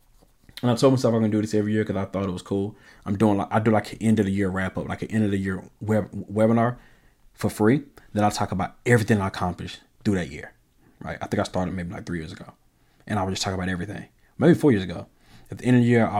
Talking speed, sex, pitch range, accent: 285 wpm, male, 95-115 Hz, American